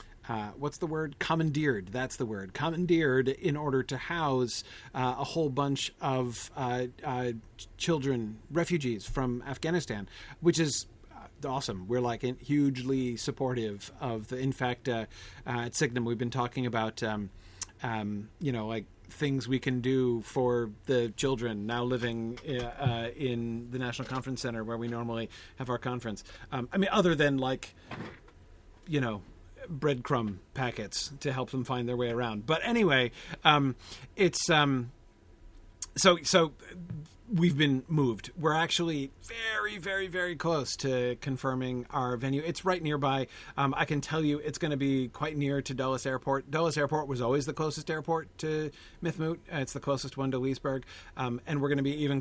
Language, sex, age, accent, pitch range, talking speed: English, male, 40-59, American, 115-150 Hz, 165 wpm